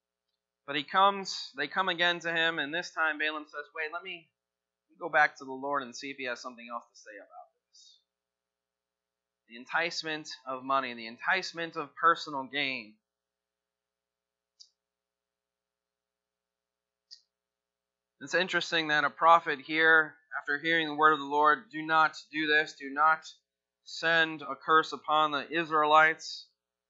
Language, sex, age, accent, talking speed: English, male, 30-49, American, 150 wpm